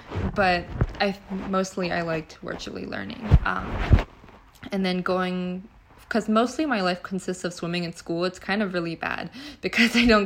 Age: 20-39